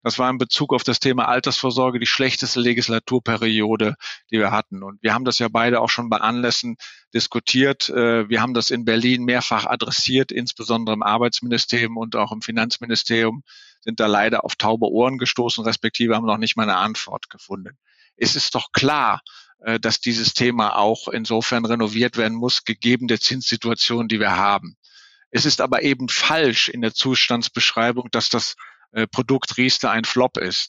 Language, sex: German, male